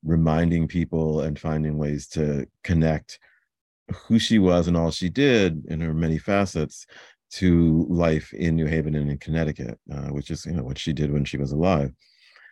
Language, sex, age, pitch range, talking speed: English, male, 50-69, 75-90 Hz, 180 wpm